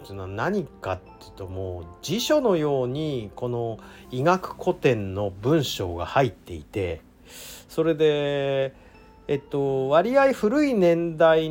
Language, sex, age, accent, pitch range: Japanese, male, 40-59, native, 110-185 Hz